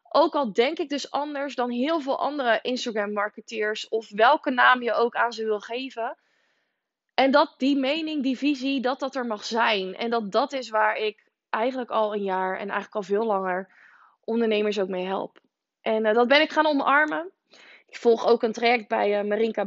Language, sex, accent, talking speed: Dutch, female, Dutch, 200 wpm